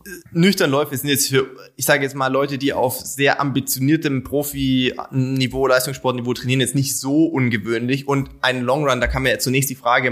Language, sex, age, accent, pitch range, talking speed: German, male, 20-39, German, 125-145 Hz, 170 wpm